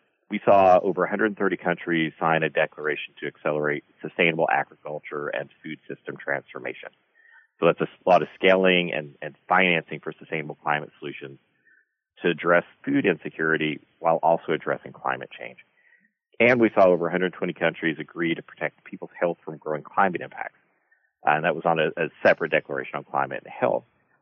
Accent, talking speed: American, 160 wpm